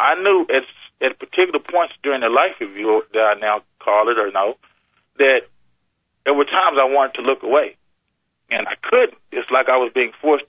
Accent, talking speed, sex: American, 205 wpm, male